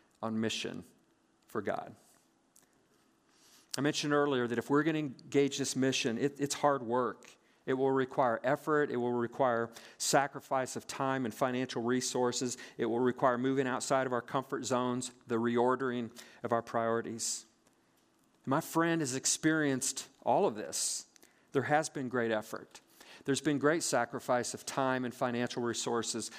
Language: English